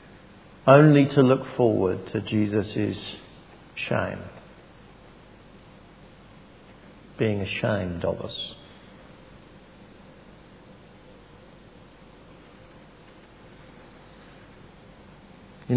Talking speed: 45 wpm